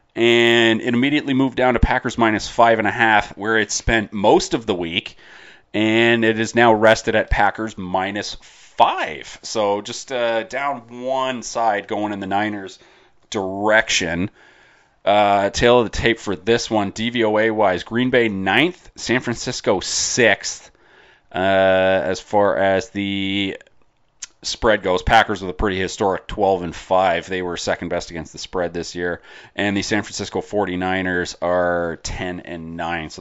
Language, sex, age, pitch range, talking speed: English, male, 30-49, 90-115 Hz, 160 wpm